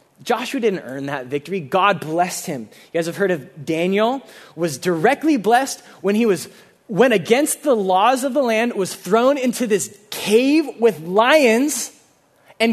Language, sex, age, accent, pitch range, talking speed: English, male, 20-39, American, 165-220 Hz, 165 wpm